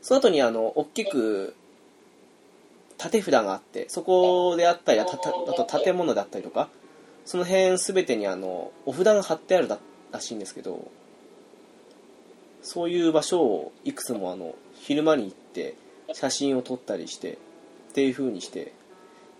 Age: 20-39